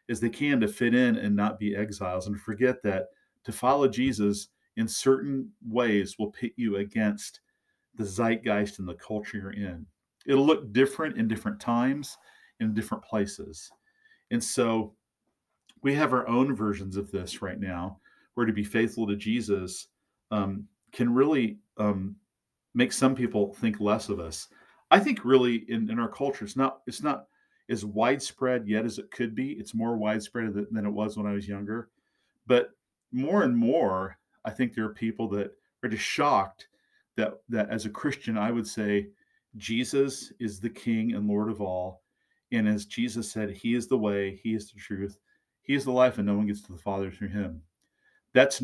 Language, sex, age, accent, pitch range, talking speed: English, male, 40-59, American, 105-130 Hz, 185 wpm